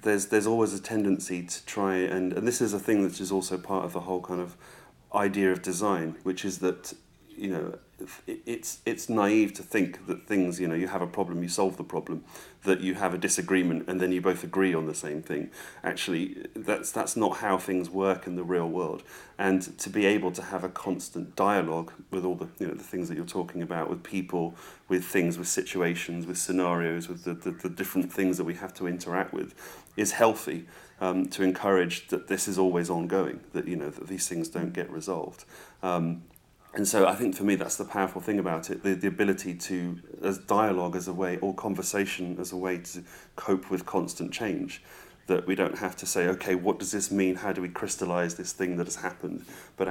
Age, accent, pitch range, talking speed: 30-49, British, 90-95 Hz, 220 wpm